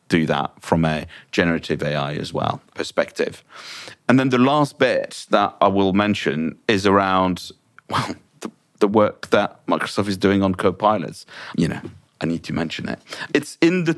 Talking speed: 170 wpm